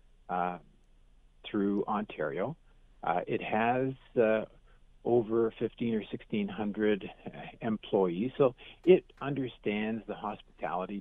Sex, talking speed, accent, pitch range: male, 95 wpm, American, 95-120 Hz